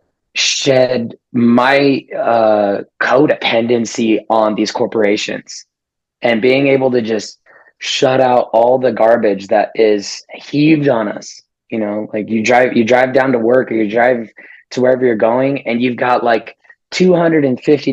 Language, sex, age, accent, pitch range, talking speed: English, male, 20-39, American, 115-130 Hz, 145 wpm